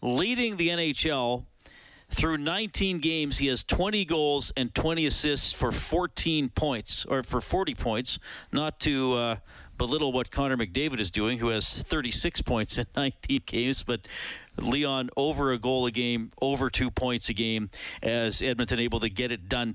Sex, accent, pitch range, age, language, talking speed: male, American, 115-140 Hz, 40-59, English, 165 wpm